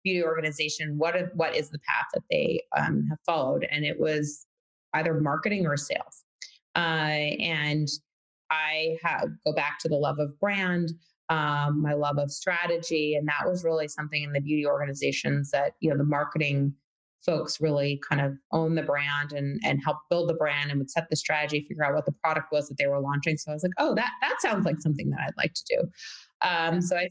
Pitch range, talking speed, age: 145-175 Hz, 210 wpm, 20-39